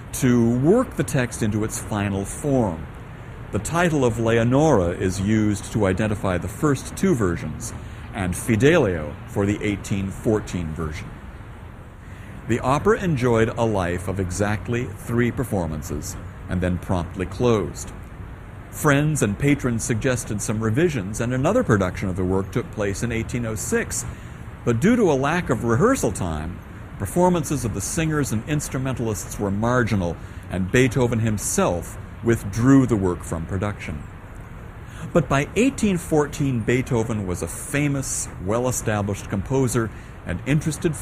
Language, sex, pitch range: English, male, 100-130 Hz